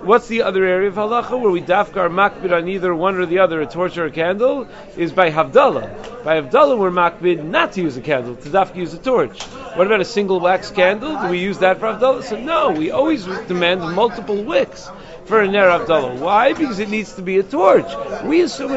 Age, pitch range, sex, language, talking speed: 40-59, 175-220 Hz, male, English, 225 wpm